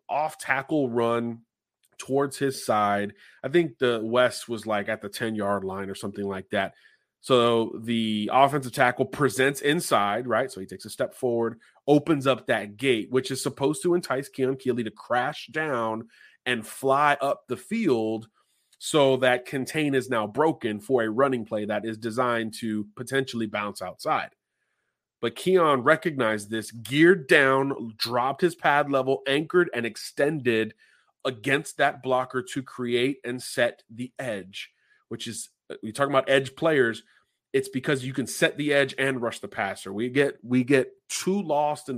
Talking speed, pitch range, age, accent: 165 wpm, 115-140 Hz, 30-49, American